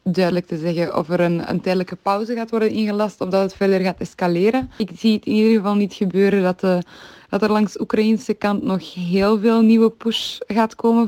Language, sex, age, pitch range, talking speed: Dutch, female, 20-39, 180-210 Hz, 220 wpm